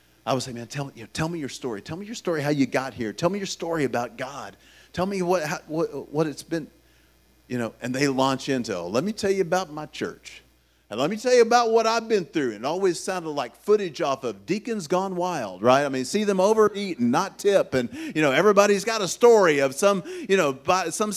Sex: male